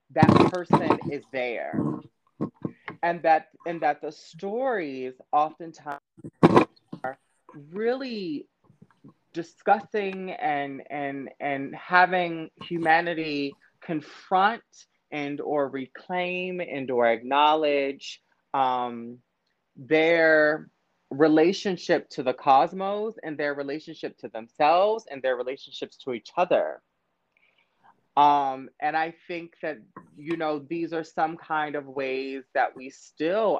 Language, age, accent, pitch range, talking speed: English, 20-39, American, 130-165 Hz, 105 wpm